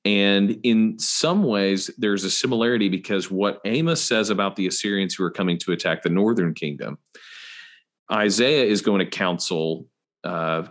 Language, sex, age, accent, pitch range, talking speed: English, male, 40-59, American, 85-100 Hz, 155 wpm